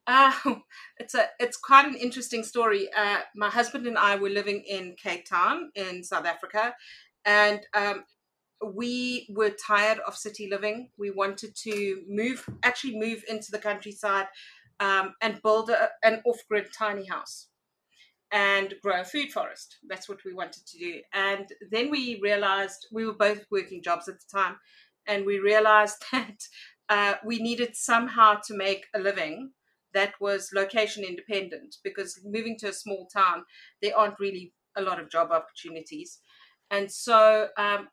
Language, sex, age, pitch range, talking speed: English, female, 30-49, 195-225 Hz, 165 wpm